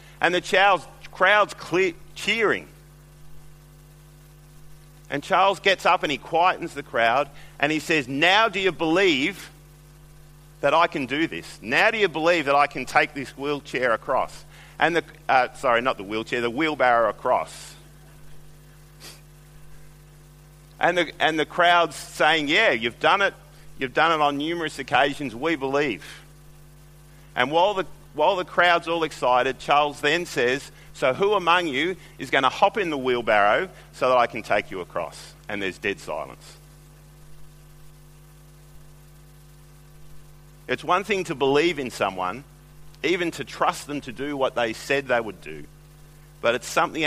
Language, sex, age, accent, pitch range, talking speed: English, male, 40-59, Australian, 145-155 Hz, 150 wpm